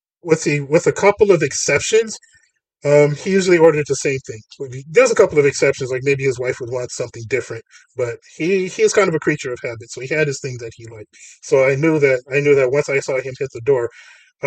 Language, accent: English, American